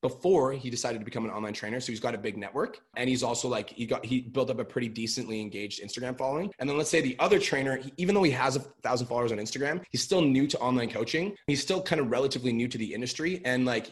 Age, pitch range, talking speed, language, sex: 20-39, 120-155 Hz, 270 wpm, English, male